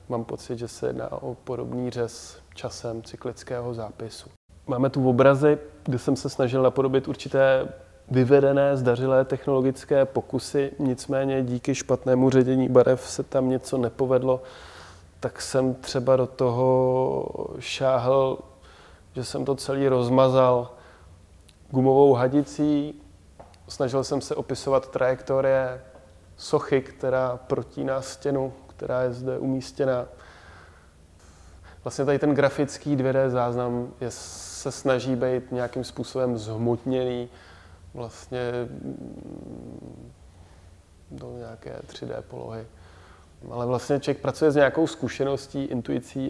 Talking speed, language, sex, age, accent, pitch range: 110 wpm, Czech, male, 20-39, native, 110-135 Hz